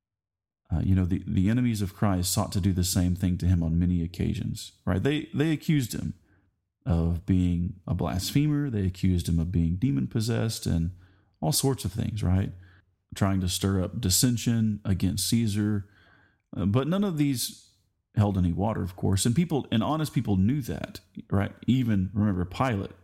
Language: English